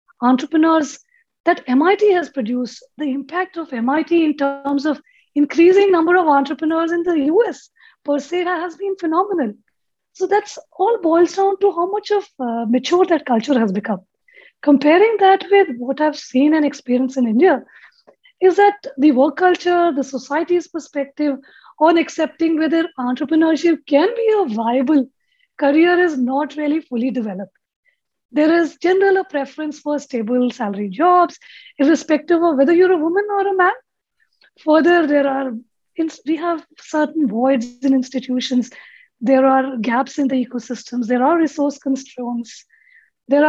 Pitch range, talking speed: 260-345 Hz, 150 wpm